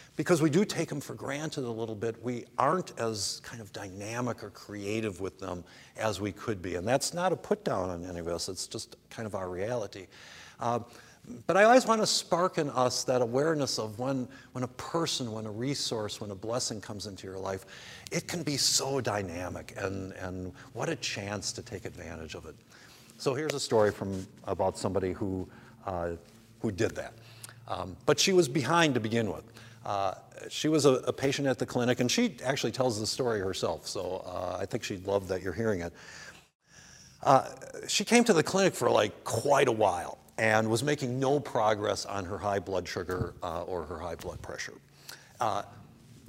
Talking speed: 200 wpm